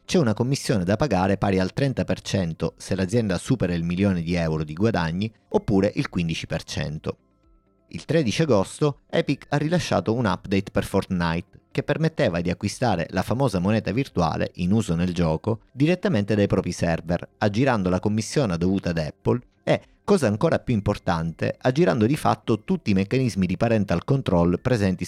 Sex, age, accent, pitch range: male, 30-49, native, 90-115 Hz